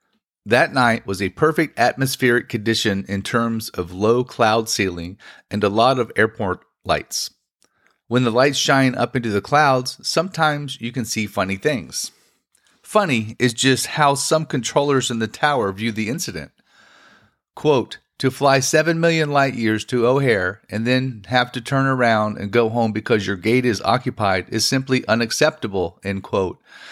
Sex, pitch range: male, 105-135 Hz